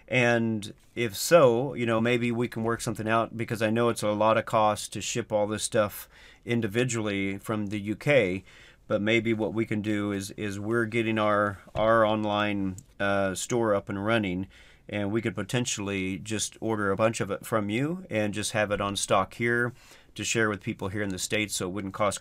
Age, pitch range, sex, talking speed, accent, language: 40-59, 100-115 Hz, male, 210 wpm, American, English